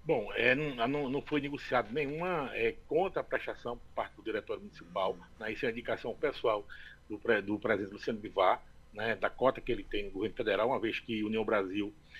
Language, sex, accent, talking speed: Portuguese, male, Brazilian, 210 wpm